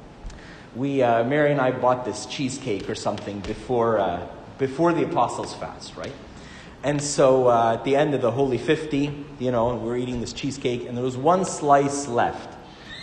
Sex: male